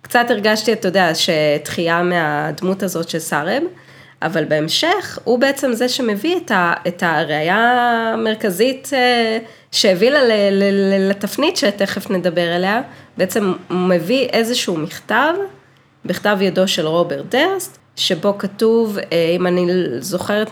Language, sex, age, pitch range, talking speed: Hebrew, female, 30-49, 175-235 Hz, 125 wpm